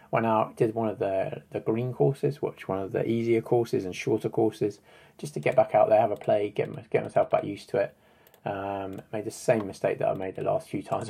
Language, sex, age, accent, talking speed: English, male, 20-39, British, 255 wpm